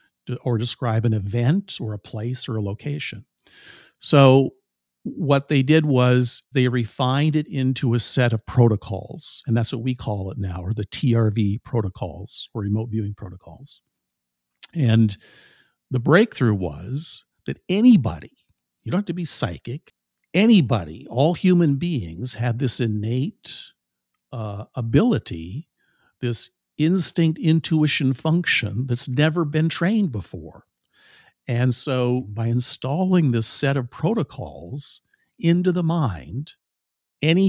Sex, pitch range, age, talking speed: male, 110-145 Hz, 50-69, 130 wpm